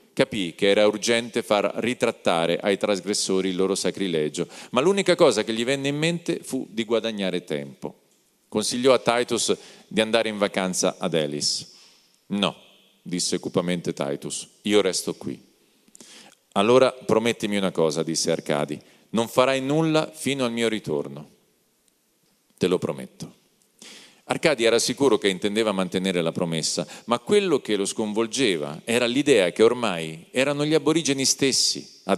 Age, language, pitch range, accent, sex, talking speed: 40-59, Italian, 90-120 Hz, native, male, 145 wpm